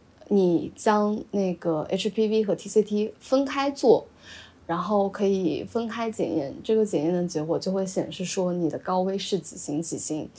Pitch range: 175-225 Hz